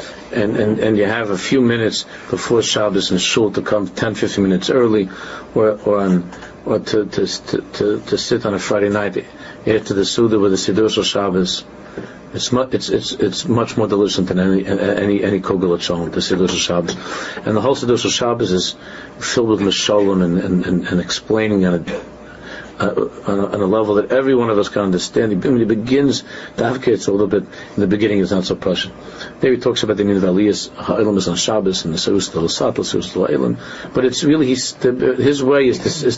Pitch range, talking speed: 95-115 Hz, 205 wpm